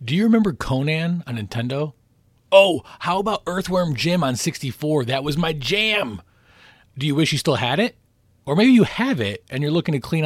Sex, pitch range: male, 115-150 Hz